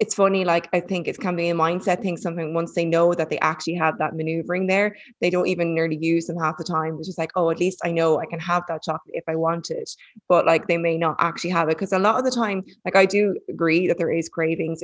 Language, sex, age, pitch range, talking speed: English, female, 20-39, 165-180 Hz, 285 wpm